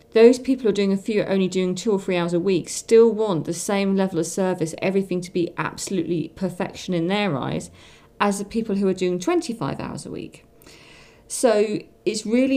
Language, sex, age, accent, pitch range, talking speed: English, female, 40-59, British, 155-185 Hz, 205 wpm